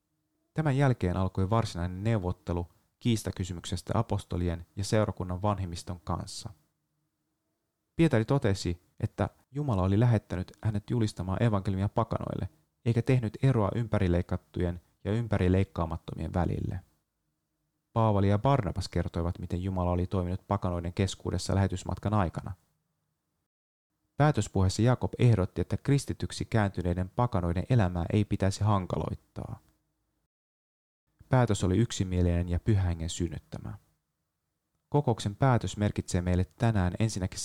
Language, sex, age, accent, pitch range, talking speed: Finnish, male, 30-49, native, 90-110 Hz, 100 wpm